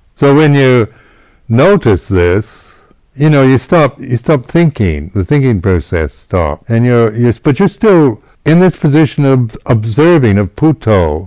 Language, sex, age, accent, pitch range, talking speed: English, male, 60-79, American, 95-125 Hz, 155 wpm